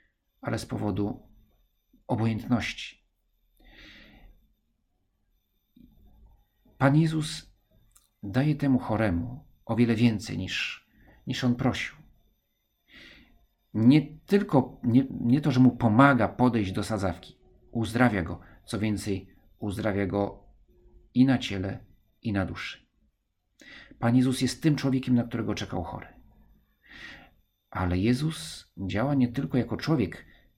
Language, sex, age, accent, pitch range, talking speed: Polish, male, 50-69, native, 100-125 Hz, 110 wpm